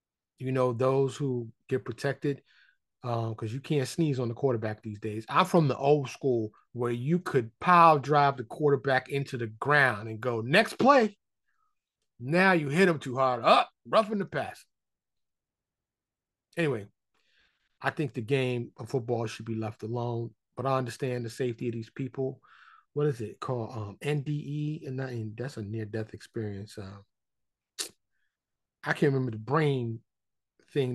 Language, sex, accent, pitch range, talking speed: English, male, American, 115-145 Hz, 165 wpm